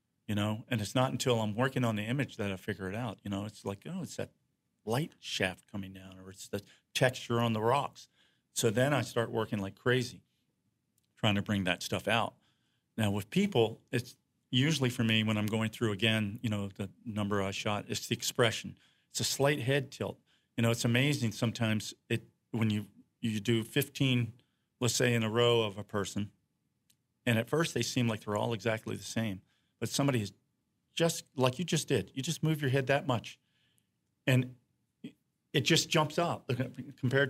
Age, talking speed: 40-59, 200 wpm